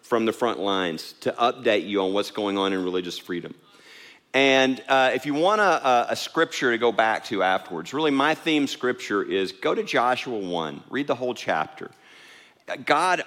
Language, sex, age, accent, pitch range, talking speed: English, male, 40-59, American, 100-145 Hz, 185 wpm